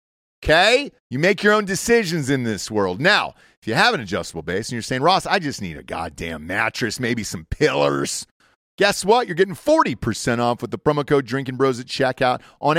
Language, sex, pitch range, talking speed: English, male, 120-170 Hz, 205 wpm